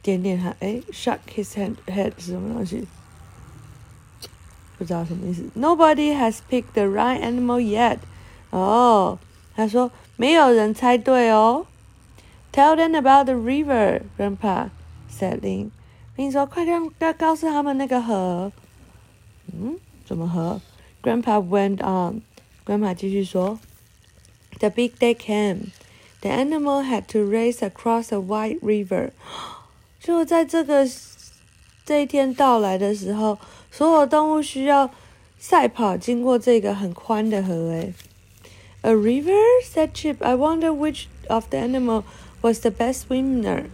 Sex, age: female, 50-69